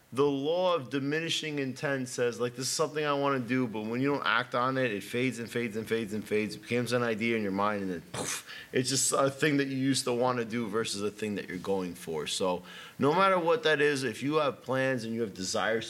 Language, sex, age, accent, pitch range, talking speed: English, male, 30-49, American, 115-150 Hz, 270 wpm